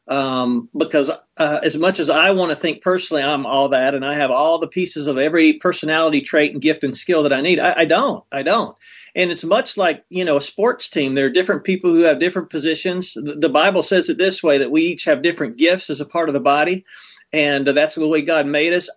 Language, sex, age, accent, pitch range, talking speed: English, male, 40-59, American, 145-180 Hz, 255 wpm